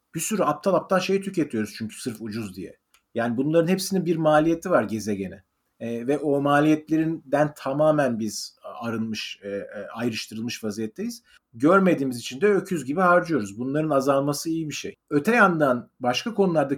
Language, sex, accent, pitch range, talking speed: Turkish, male, native, 125-175 Hz, 150 wpm